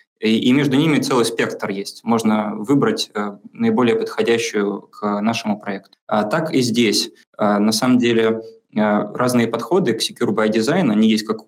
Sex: male